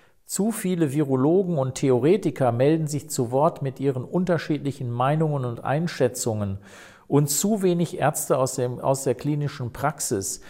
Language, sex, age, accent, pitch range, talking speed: German, male, 50-69, German, 125-155 Hz, 145 wpm